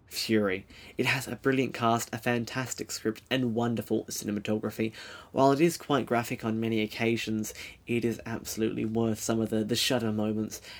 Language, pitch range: English, 110-130 Hz